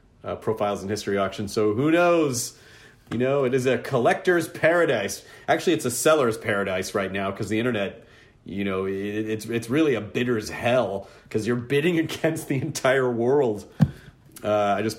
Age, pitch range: 40-59, 100-135 Hz